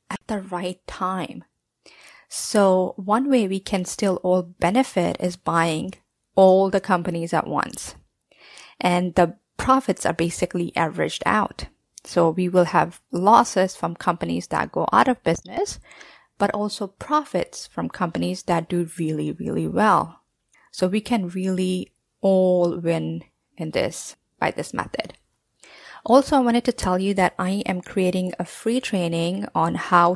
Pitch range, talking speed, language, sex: 175-205 Hz, 145 wpm, English, female